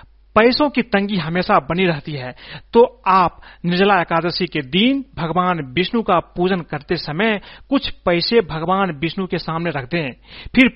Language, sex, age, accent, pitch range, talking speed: Hindi, male, 40-59, native, 175-220 Hz, 155 wpm